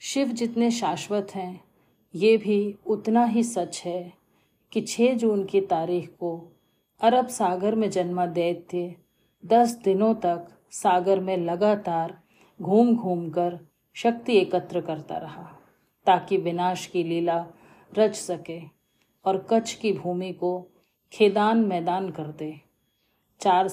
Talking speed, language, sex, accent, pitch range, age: 125 wpm, Hindi, female, native, 175-210 Hz, 40-59